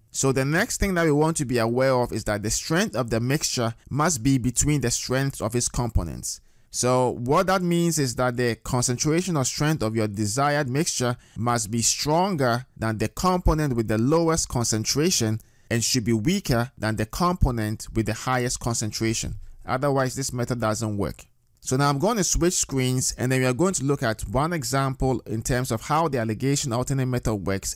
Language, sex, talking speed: English, male, 200 wpm